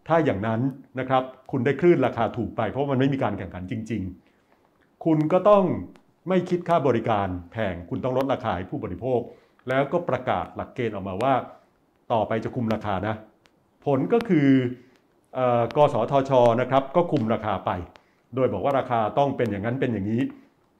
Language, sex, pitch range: Thai, male, 110-150 Hz